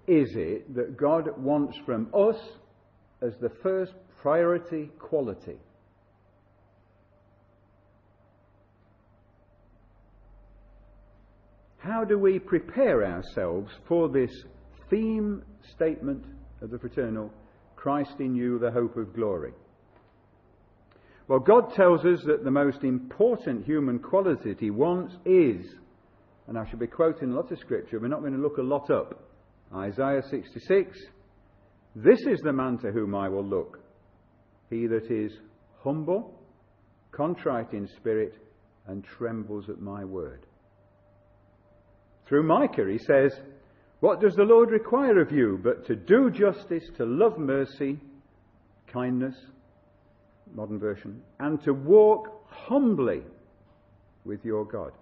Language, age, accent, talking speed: English, 50-69, British, 125 wpm